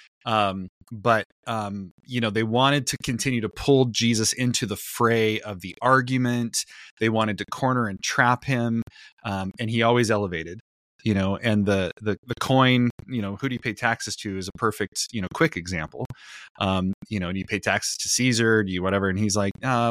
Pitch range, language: 95-120 Hz, English